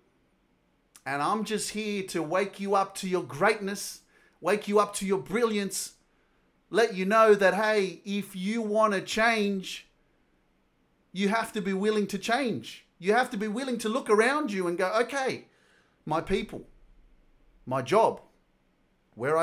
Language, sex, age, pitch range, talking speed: English, male, 30-49, 175-215 Hz, 160 wpm